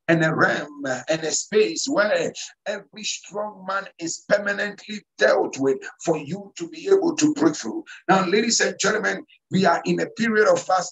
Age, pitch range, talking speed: 50-69, 160-205 Hz, 180 wpm